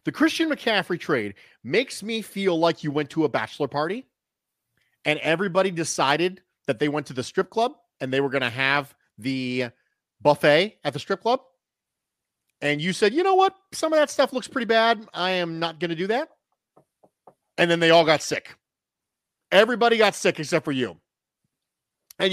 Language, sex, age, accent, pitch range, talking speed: English, male, 40-59, American, 155-225 Hz, 180 wpm